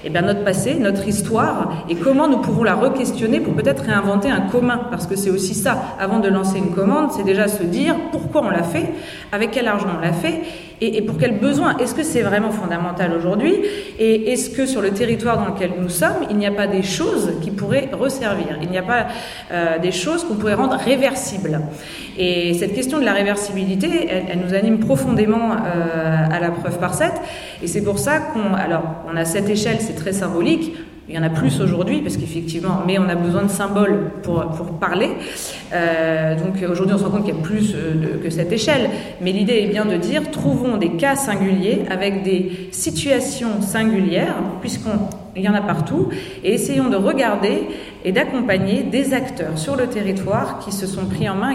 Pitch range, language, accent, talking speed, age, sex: 180-230 Hz, French, French, 210 wpm, 30-49, female